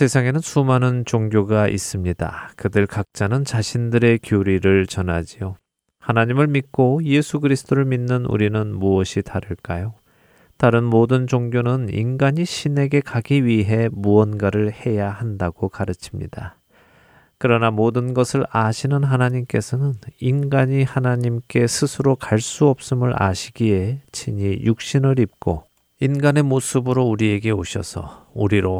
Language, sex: Korean, male